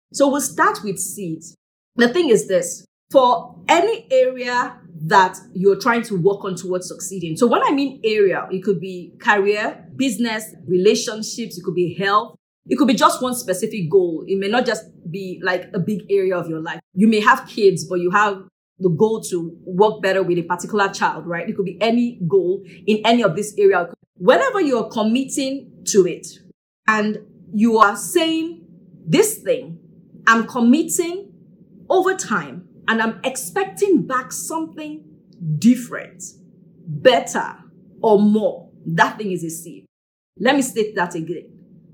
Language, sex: English, female